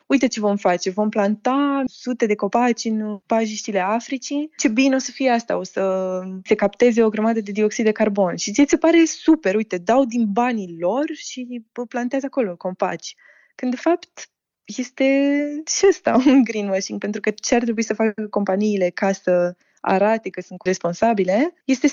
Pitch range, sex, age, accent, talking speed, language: 195-260 Hz, female, 20-39, native, 180 wpm, Romanian